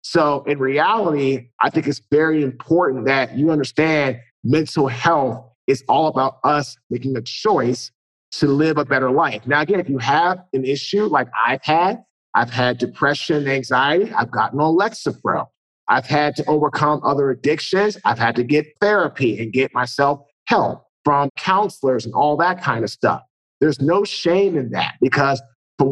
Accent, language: American, English